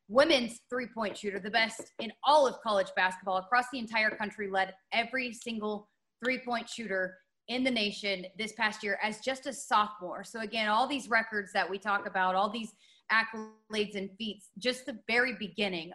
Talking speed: 175 wpm